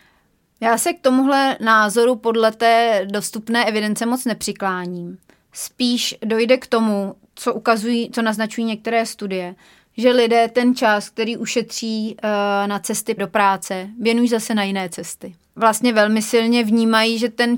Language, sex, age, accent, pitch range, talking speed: Czech, female, 30-49, native, 205-230 Hz, 145 wpm